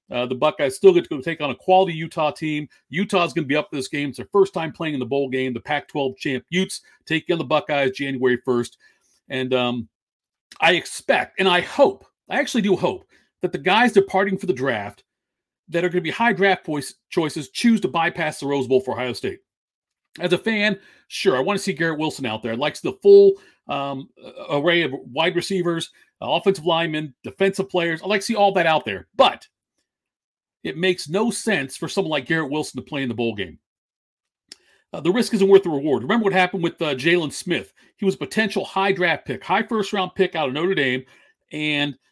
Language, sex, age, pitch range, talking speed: English, male, 40-59, 145-195 Hz, 225 wpm